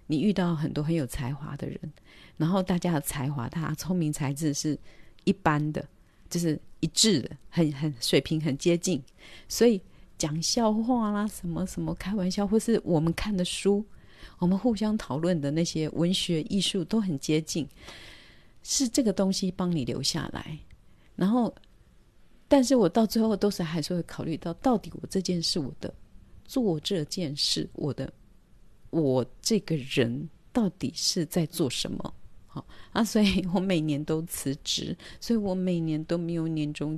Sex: female